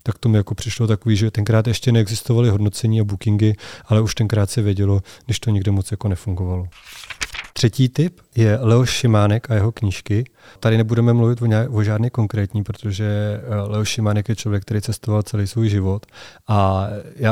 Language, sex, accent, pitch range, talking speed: Czech, male, native, 100-110 Hz, 175 wpm